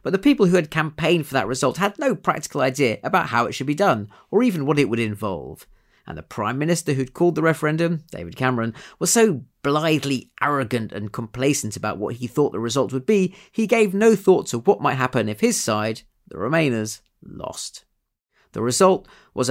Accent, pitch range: British, 125-185 Hz